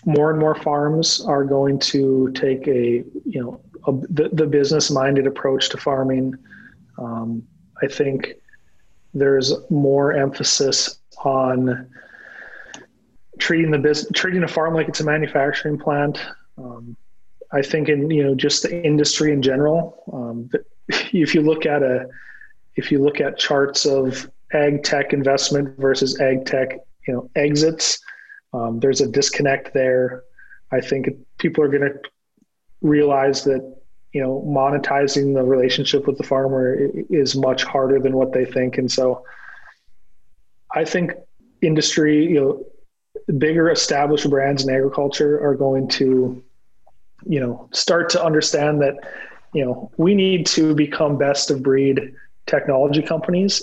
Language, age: English, 30-49